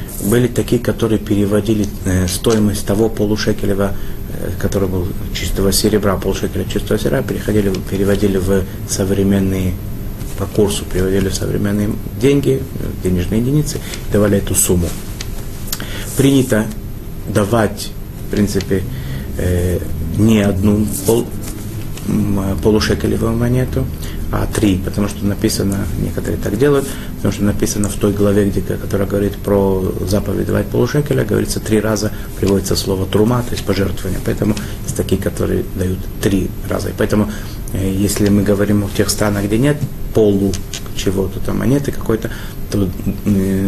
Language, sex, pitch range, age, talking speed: Russian, male, 100-105 Hz, 30-49, 120 wpm